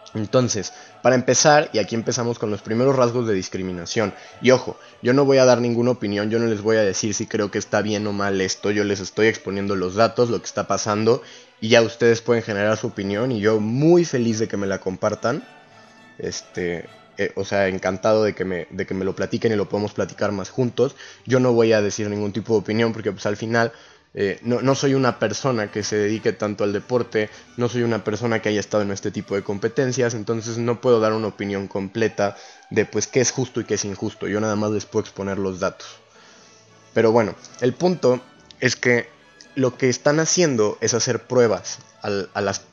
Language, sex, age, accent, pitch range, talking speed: Spanish, male, 20-39, Mexican, 105-120 Hz, 220 wpm